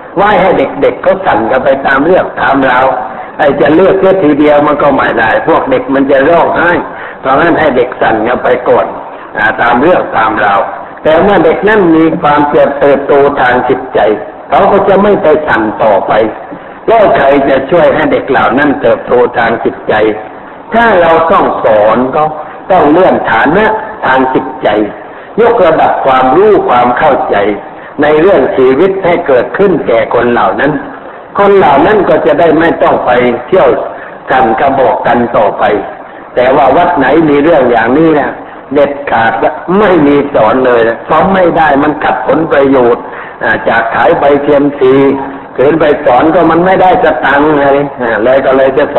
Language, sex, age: Thai, male, 60-79